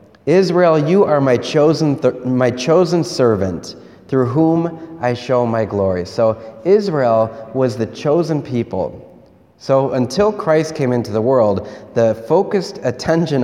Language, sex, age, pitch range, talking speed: English, male, 30-49, 105-145 Hz, 140 wpm